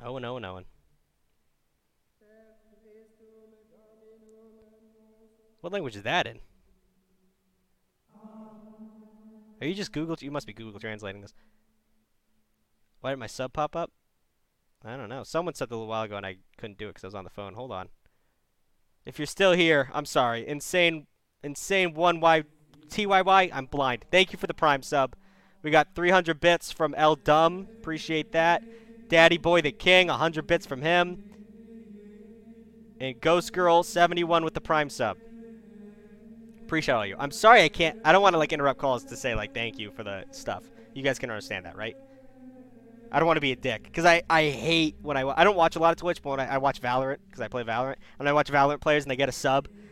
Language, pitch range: English, 135-215 Hz